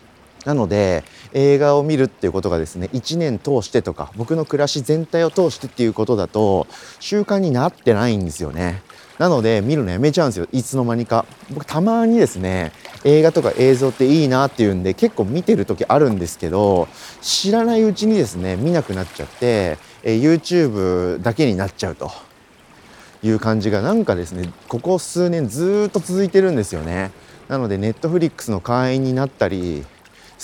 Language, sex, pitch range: Japanese, male, 100-150 Hz